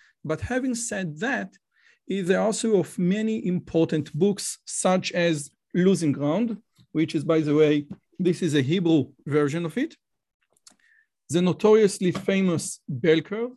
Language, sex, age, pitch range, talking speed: English, male, 40-59, 155-200 Hz, 135 wpm